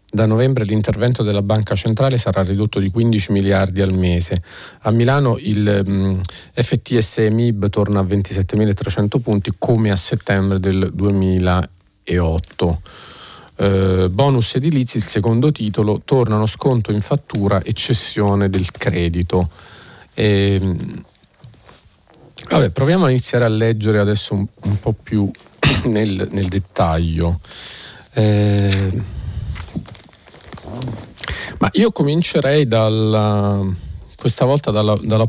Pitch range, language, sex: 95-110 Hz, Italian, male